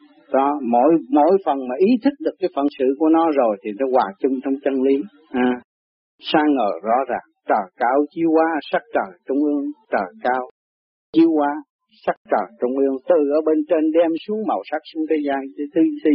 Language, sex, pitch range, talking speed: Vietnamese, male, 125-160 Hz, 210 wpm